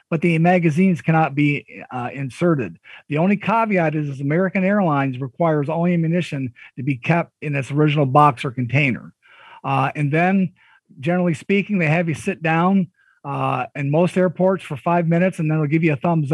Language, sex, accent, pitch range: English, male, American, 145-185 Hz